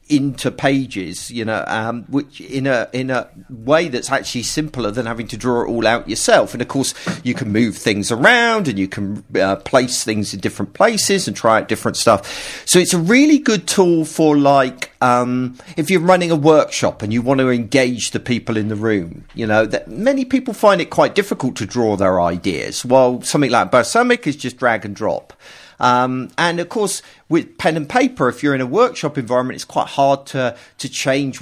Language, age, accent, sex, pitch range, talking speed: English, 40-59, British, male, 110-155 Hz, 210 wpm